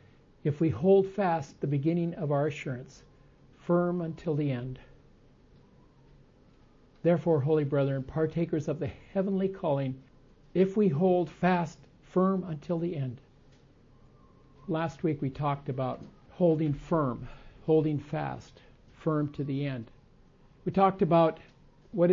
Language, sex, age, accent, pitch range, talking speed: English, male, 60-79, American, 135-170 Hz, 125 wpm